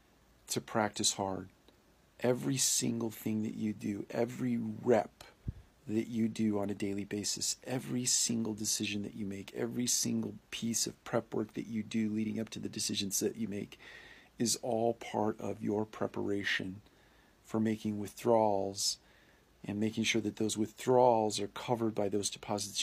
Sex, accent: male, American